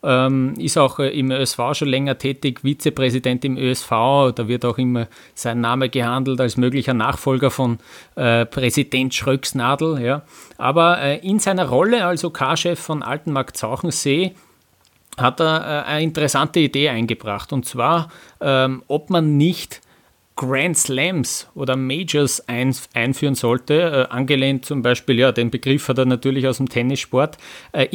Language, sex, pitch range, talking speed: German, male, 130-150 Hz, 145 wpm